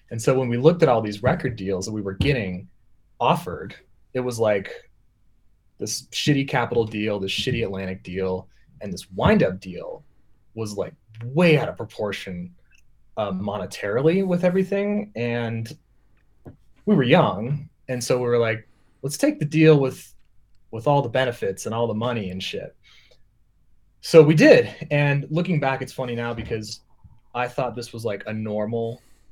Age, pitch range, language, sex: 20-39, 105-135 Hz, English, male